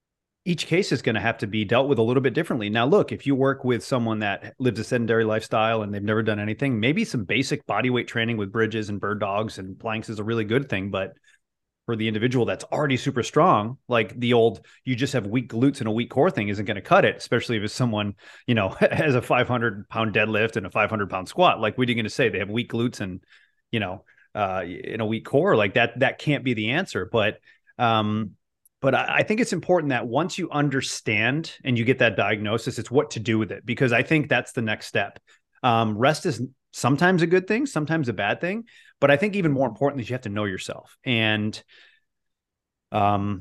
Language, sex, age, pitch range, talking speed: English, male, 30-49, 105-130 Hz, 235 wpm